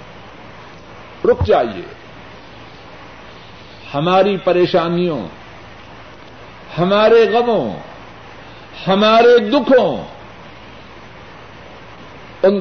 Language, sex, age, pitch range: Urdu, male, 60-79, 170-260 Hz